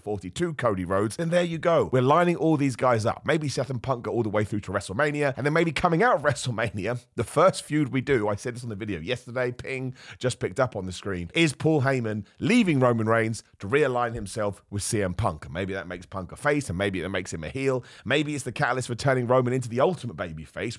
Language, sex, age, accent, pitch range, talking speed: English, male, 30-49, British, 110-145 Hz, 255 wpm